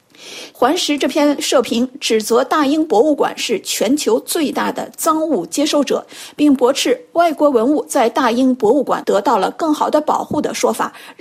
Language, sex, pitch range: Chinese, female, 245-315 Hz